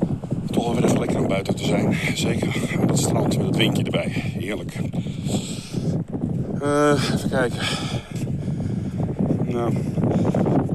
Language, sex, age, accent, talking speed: Dutch, male, 50-69, Dutch, 110 wpm